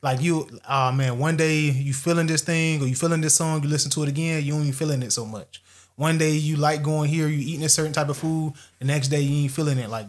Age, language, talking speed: 20-39, English, 280 wpm